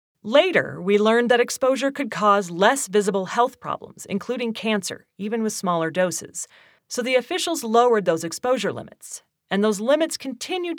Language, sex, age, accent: English, female, 40-59, American